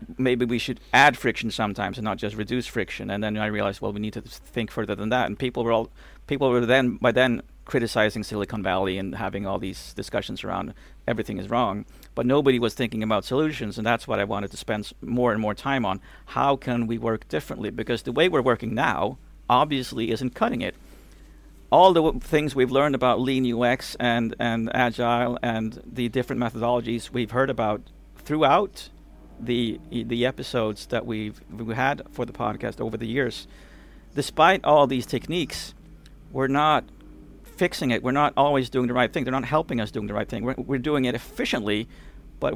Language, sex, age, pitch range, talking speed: English, male, 50-69, 110-130 Hz, 200 wpm